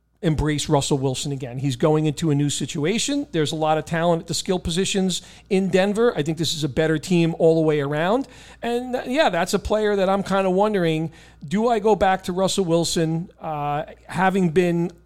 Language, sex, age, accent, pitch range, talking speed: English, male, 40-59, American, 150-185 Hz, 205 wpm